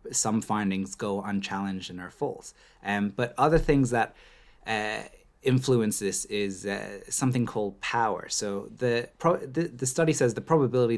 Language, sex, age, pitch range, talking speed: English, male, 20-39, 100-125 Hz, 160 wpm